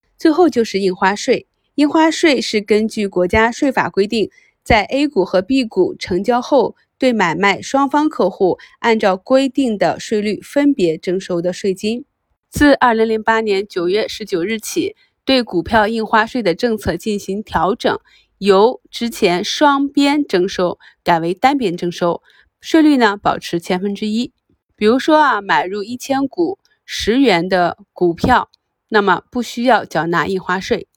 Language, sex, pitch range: Chinese, female, 185-265 Hz